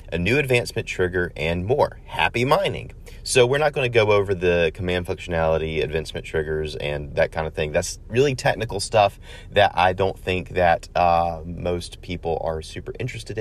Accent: American